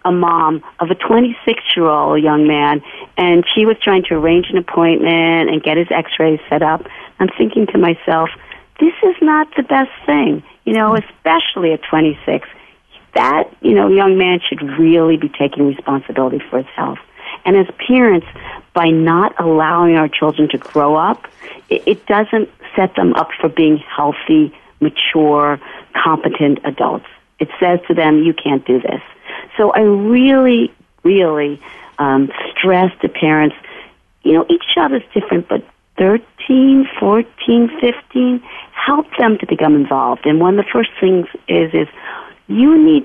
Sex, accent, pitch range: female, American, 155-225 Hz